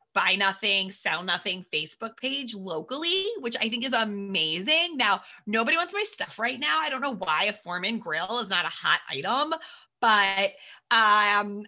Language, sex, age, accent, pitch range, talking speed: English, female, 30-49, American, 190-250 Hz, 170 wpm